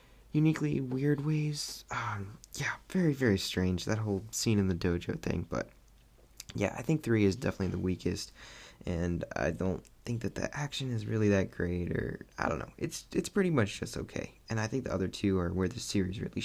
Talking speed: 205 wpm